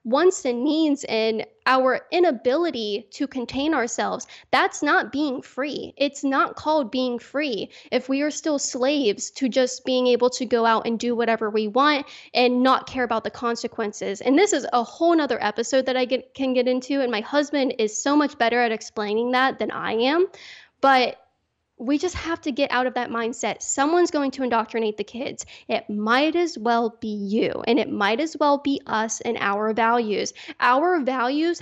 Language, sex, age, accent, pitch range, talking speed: English, female, 10-29, American, 235-295 Hz, 190 wpm